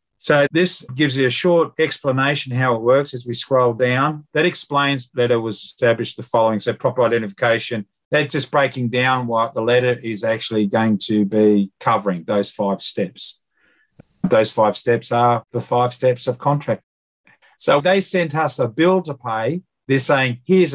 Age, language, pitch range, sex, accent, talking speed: 50-69, English, 120-150 Hz, male, Australian, 175 wpm